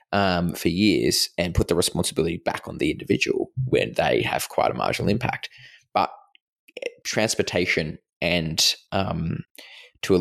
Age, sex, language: 20-39, male, English